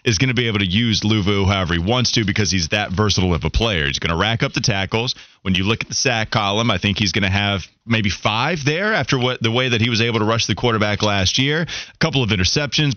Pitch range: 105-145 Hz